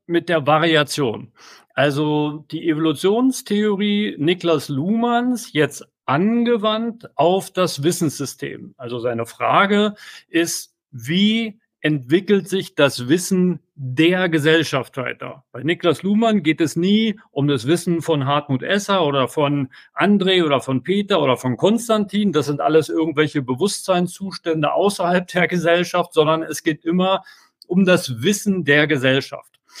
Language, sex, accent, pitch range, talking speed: German, male, German, 145-195 Hz, 125 wpm